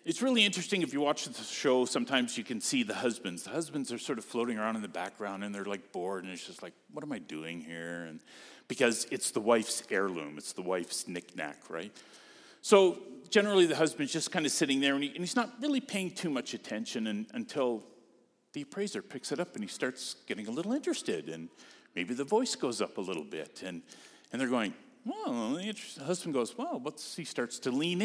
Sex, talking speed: male, 220 wpm